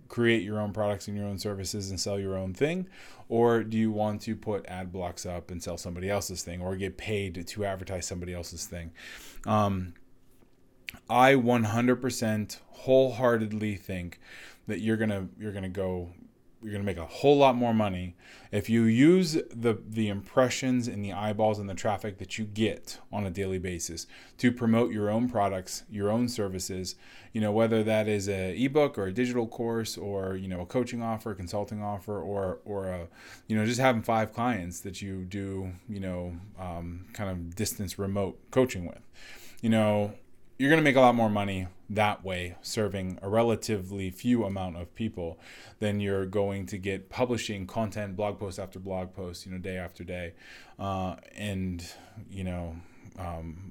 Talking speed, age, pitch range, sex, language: 185 wpm, 20-39, 95-115 Hz, male, English